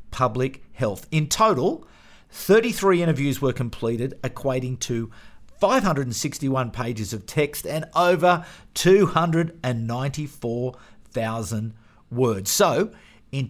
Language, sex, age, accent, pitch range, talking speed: English, male, 50-69, Australian, 125-185 Hz, 90 wpm